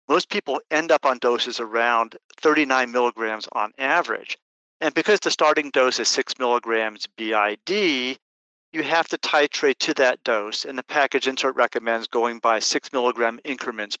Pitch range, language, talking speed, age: 115-140 Hz, English, 160 wpm, 50-69